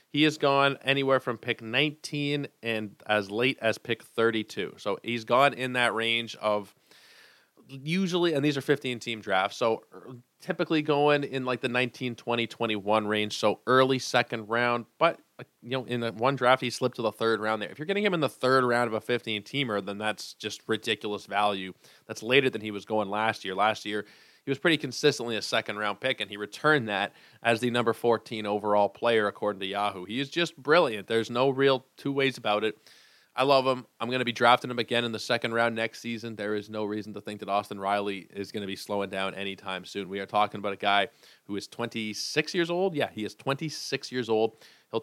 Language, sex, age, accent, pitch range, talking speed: English, male, 20-39, American, 105-130 Hz, 215 wpm